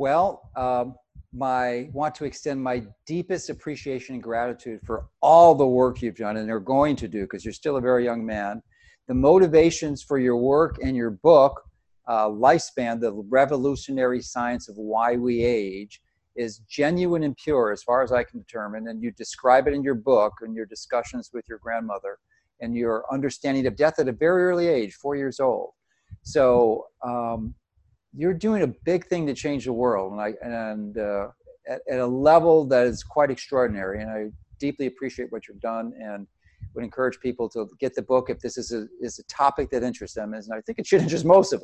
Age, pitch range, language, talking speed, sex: 50-69, 110-140 Hz, English, 200 wpm, male